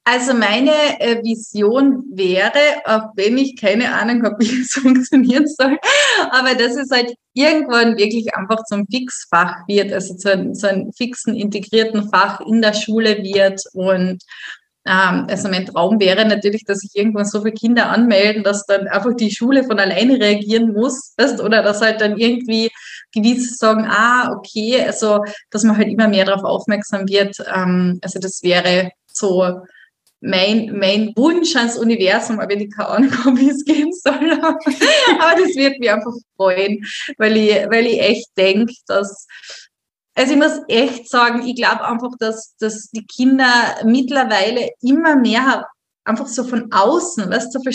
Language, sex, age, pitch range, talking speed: German, female, 20-39, 205-255 Hz, 165 wpm